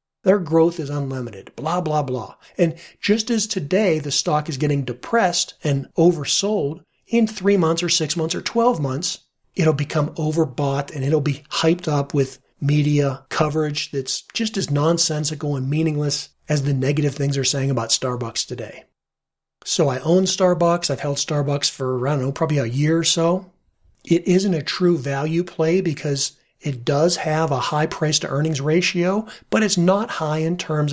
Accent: American